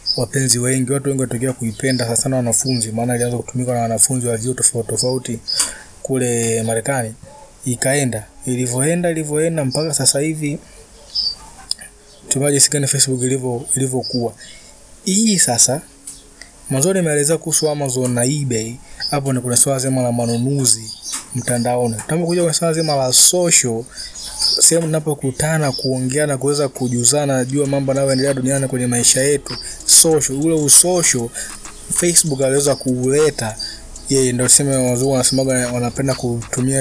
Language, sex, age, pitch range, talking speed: Swahili, male, 20-39, 125-140 Hz, 125 wpm